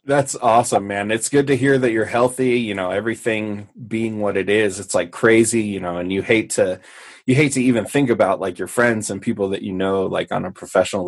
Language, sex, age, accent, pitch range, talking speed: English, male, 20-39, American, 105-130 Hz, 240 wpm